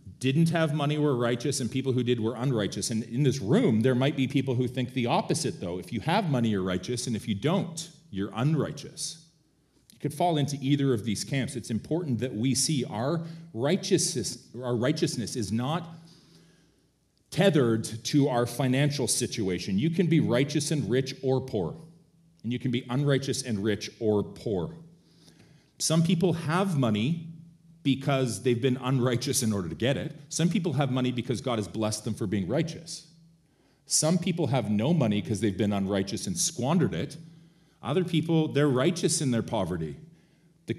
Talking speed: 180 wpm